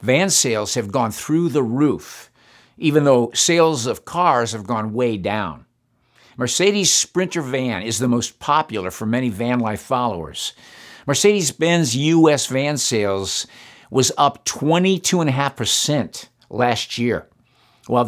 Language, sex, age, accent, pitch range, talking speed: English, male, 50-69, American, 115-160 Hz, 125 wpm